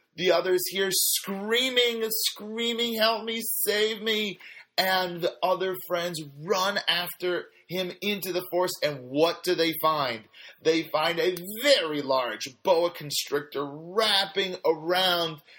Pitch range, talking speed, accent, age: 165-215 Hz, 125 wpm, American, 30-49